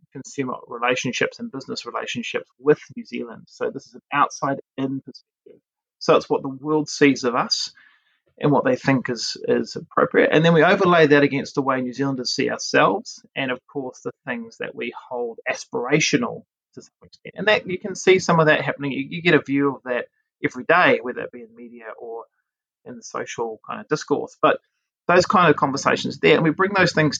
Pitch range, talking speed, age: 130-185 Hz, 205 wpm, 30-49